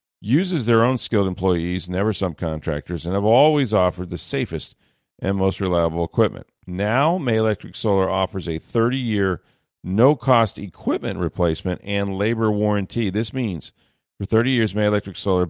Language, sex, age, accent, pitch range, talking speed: English, male, 40-59, American, 95-115 Hz, 145 wpm